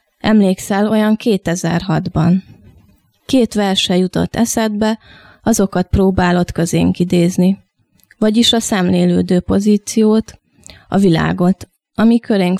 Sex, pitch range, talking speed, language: female, 180-215 Hz, 90 wpm, Hungarian